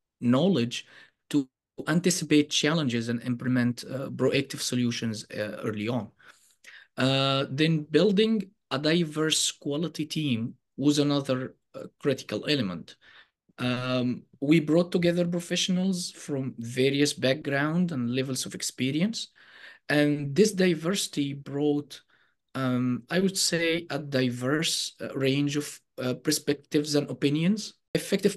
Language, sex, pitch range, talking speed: English, male, 125-160 Hz, 115 wpm